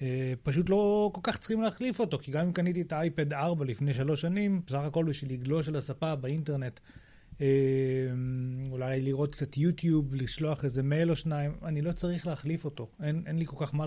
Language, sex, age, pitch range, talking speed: Hebrew, male, 30-49, 135-170 Hz, 200 wpm